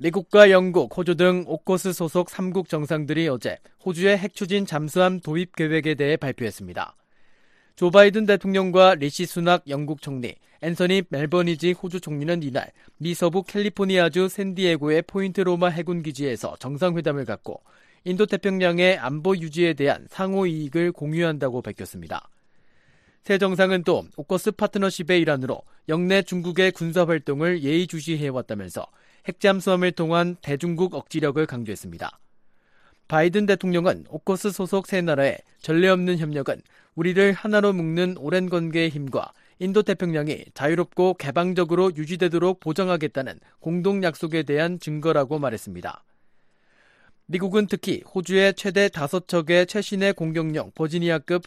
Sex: male